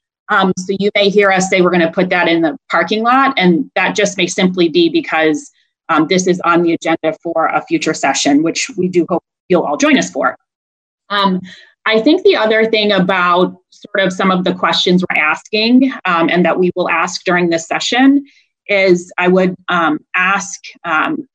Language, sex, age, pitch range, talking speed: English, female, 30-49, 170-200 Hz, 200 wpm